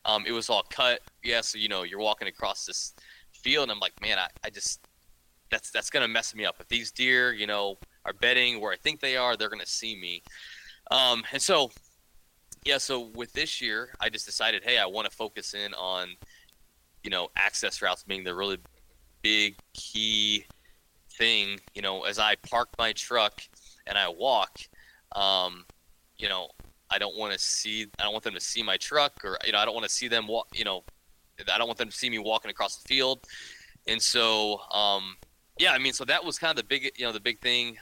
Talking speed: 220 wpm